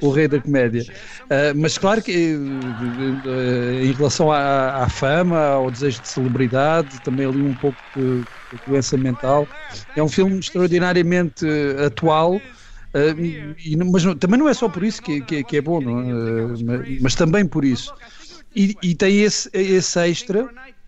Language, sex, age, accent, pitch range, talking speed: Portuguese, male, 50-69, Portuguese, 135-175 Hz, 145 wpm